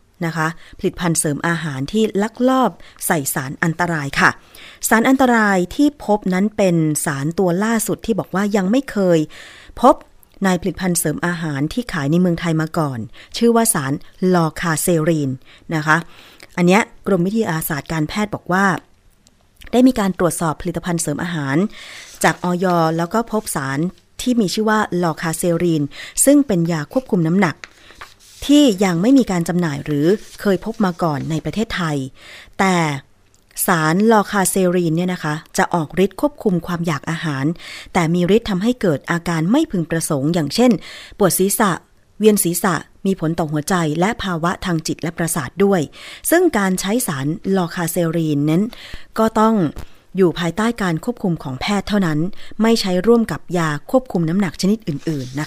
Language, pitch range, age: Thai, 160-205 Hz, 30-49